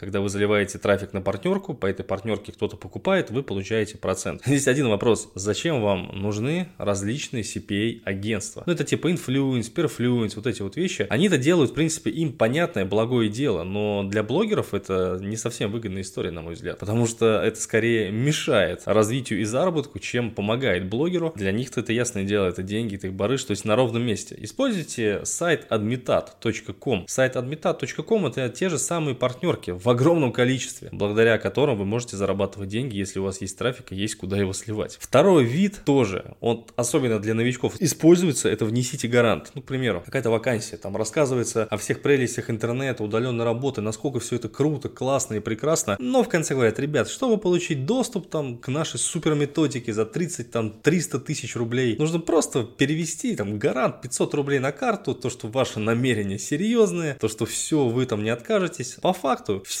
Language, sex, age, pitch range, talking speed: Russian, male, 20-39, 105-145 Hz, 180 wpm